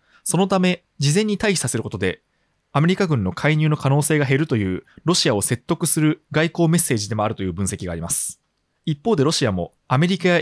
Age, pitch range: 20-39, 105-165 Hz